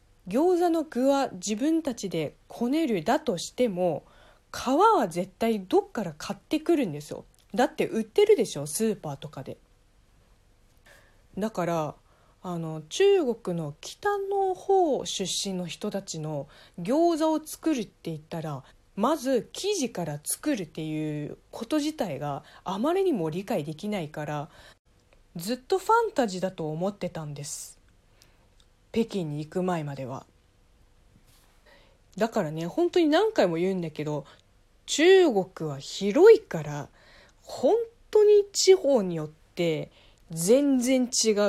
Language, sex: Japanese, female